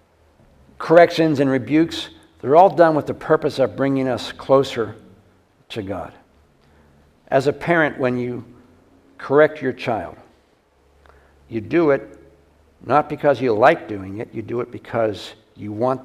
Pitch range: 110-145 Hz